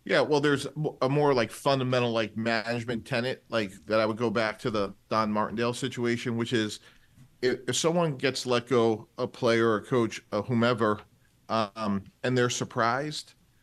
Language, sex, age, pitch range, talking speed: English, male, 40-59, 110-125 Hz, 165 wpm